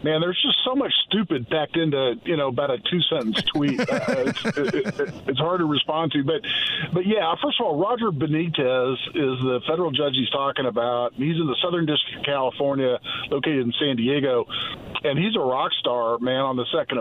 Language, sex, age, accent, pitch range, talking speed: English, male, 50-69, American, 130-160 Hz, 210 wpm